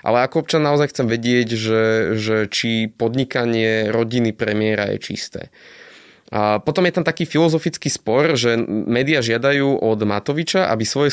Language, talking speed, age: Slovak, 150 wpm, 20-39